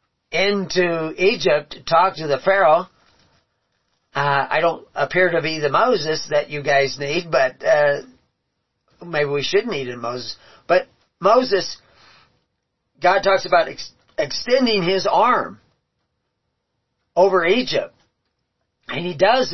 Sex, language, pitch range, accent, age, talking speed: male, English, 140-190 Hz, American, 40-59, 125 wpm